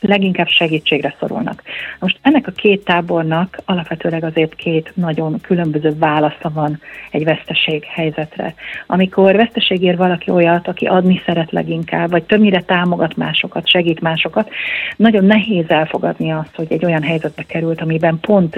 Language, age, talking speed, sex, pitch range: Hungarian, 40-59, 140 wpm, female, 160-185 Hz